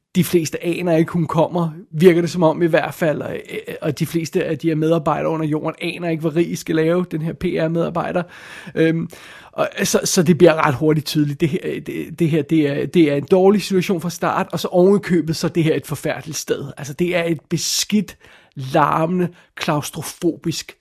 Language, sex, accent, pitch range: Danish, male, native, 155-185 Hz